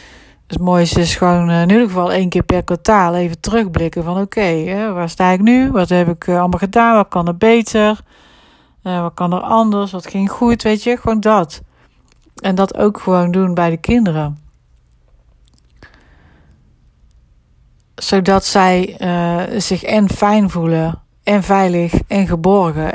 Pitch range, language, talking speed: 160-195 Hz, Dutch, 155 wpm